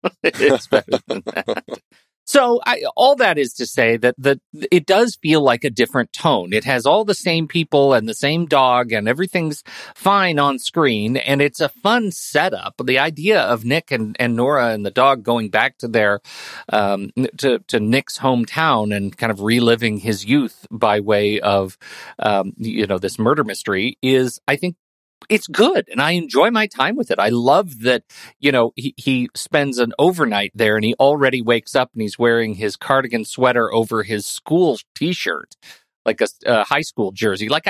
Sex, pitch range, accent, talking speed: male, 115-155 Hz, American, 180 wpm